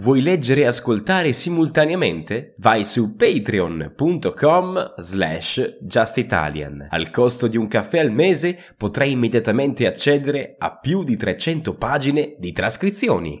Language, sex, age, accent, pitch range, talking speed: Italian, male, 10-29, native, 100-170 Hz, 120 wpm